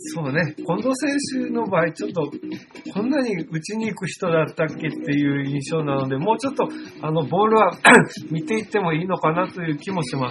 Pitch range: 145-175 Hz